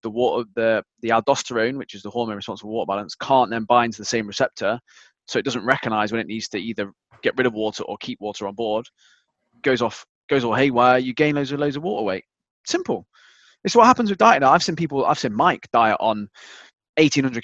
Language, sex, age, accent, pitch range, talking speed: English, male, 20-39, British, 110-135 Hz, 230 wpm